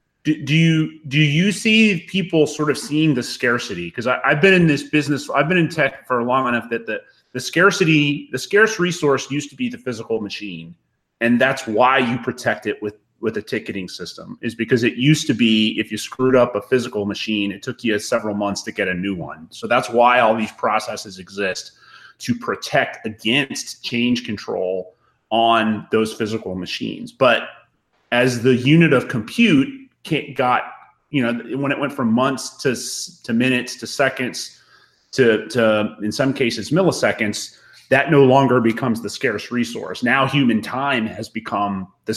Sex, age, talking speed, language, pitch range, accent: male, 30-49, 180 wpm, English, 110-150 Hz, American